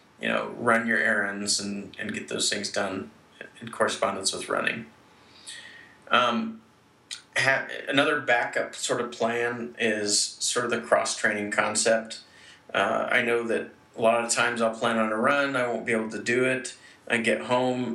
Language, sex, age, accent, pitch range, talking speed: English, male, 30-49, American, 105-120 Hz, 170 wpm